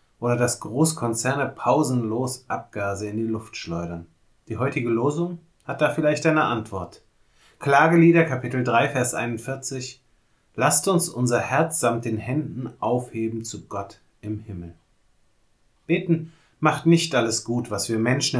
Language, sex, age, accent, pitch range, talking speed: German, male, 30-49, German, 110-145 Hz, 135 wpm